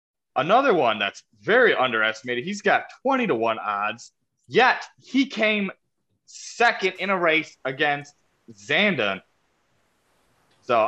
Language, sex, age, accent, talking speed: English, male, 20-39, American, 115 wpm